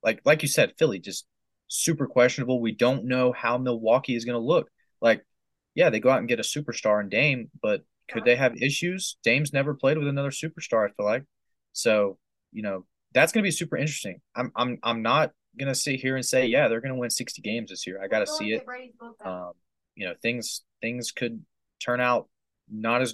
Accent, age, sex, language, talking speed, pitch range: American, 20-39, male, English, 220 wpm, 105-130 Hz